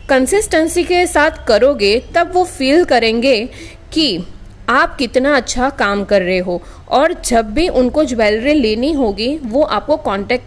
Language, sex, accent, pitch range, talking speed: Hindi, female, native, 235-315 Hz, 150 wpm